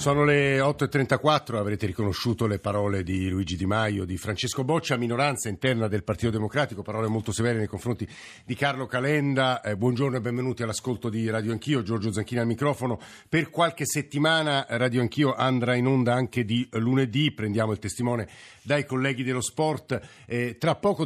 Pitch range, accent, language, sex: 105-130 Hz, native, Italian, male